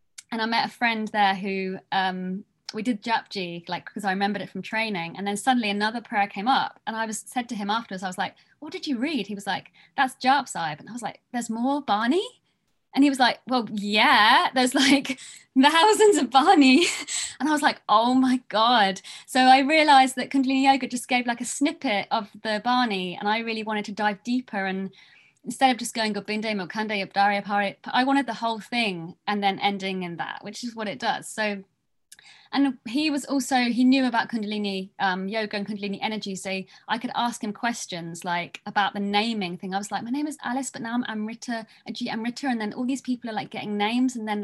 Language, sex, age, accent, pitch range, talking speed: English, female, 20-39, British, 200-255 Hz, 215 wpm